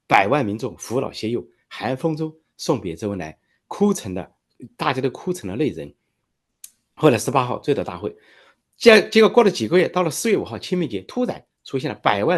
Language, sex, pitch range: Chinese, male, 110-170 Hz